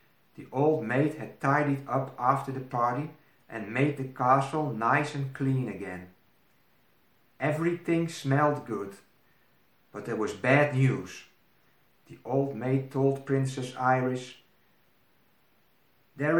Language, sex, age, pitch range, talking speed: Dutch, male, 60-79, 125-155 Hz, 115 wpm